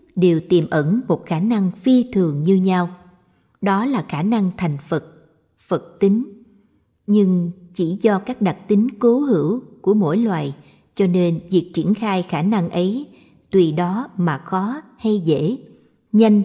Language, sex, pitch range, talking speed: Vietnamese, female, 160-215 Hz, 160 wpm